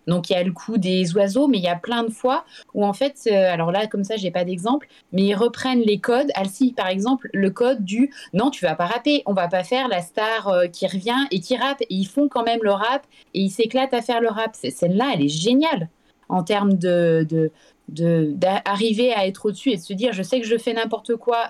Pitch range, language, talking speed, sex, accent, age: 185-240 Hz, French, 250 wpm, female, French, 30-49